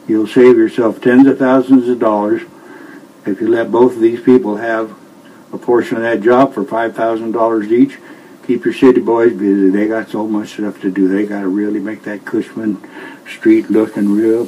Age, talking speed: 60-79, 200 wpm